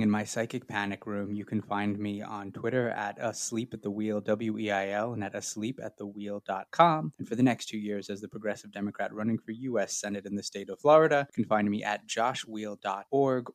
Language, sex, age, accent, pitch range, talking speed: English, male, 20-39, American, 105-115 Hz, 215 wpm